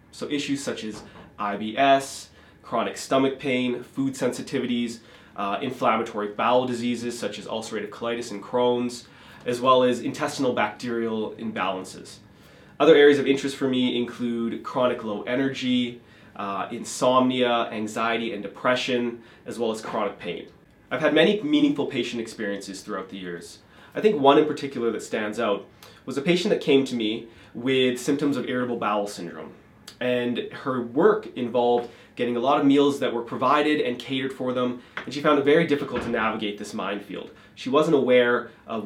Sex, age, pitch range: male, 20-39, 115-135 Hz